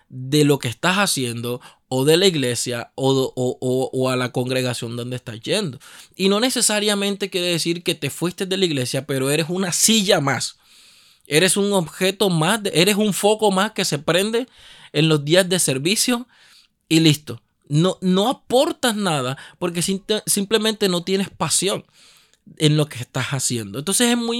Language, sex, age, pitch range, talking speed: Spanish, male, 20-39, 140-205 Hz, 165 wpm